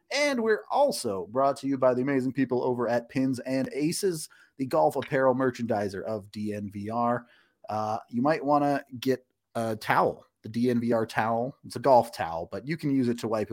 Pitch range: 105-150 Hz